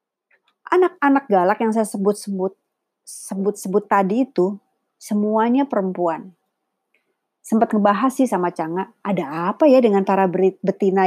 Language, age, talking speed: Indonesian, 30-49, 115 wpm